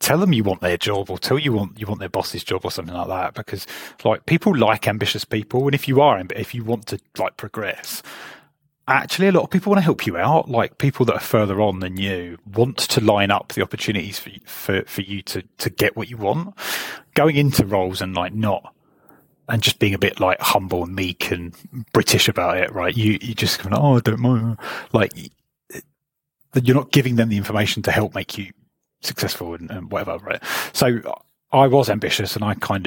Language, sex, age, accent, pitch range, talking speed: English, male, 30-49, British, 95-125 Hz, 215 wpm